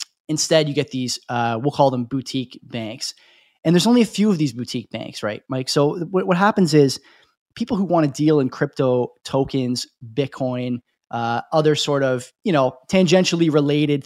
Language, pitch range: English, 130-185 Hz